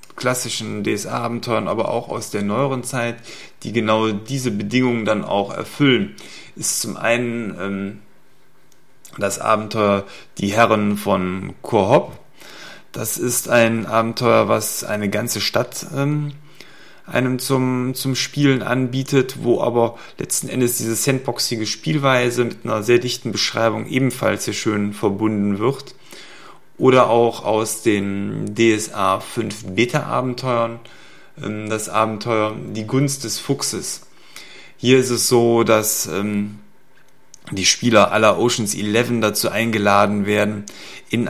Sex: male